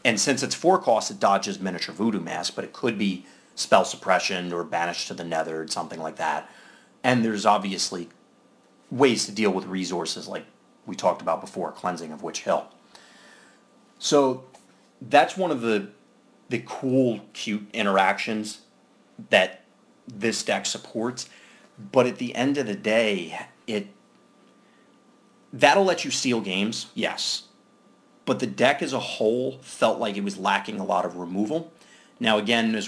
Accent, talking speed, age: American, 160 wpm, 30-49